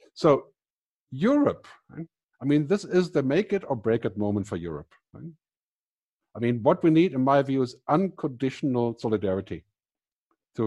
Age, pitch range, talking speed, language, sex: 50-69, 110-155 Hz, 165 wpm, English, male